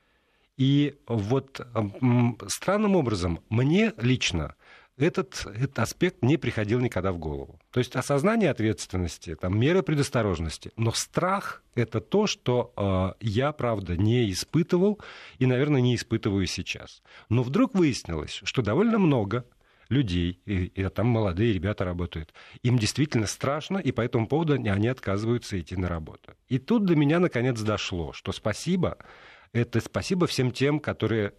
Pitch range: 100-135 Hz